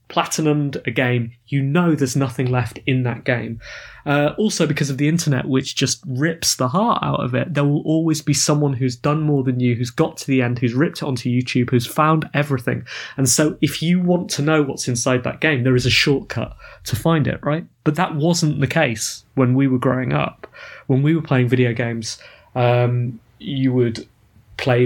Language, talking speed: English, 210 wpm